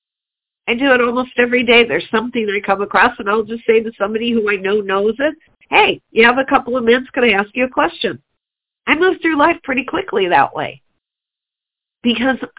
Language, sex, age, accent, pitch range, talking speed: English, female, 50-69, American, 200-245 Hz, 210 wpm